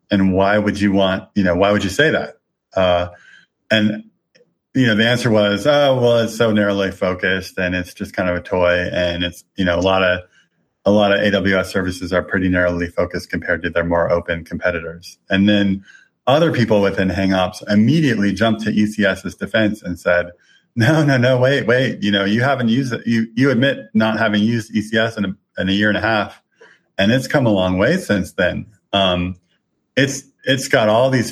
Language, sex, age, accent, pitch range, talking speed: English, male, 30-49, American, 95-115 Hz, 205 wpm